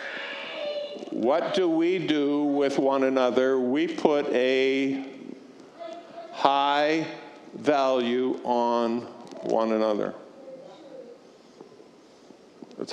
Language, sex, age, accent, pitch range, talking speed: English, male, 50-69, American, 125-155 Hz, 75 wpm